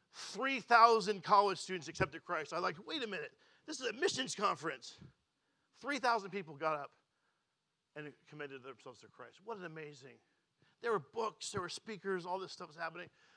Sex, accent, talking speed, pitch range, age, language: male, American, 170 wpm, 155-200 Hz, 40-59, English